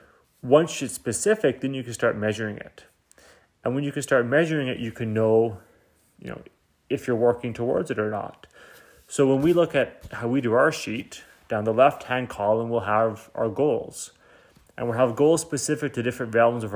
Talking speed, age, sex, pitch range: 195 wpm, 30-49, male, 110-125 Hz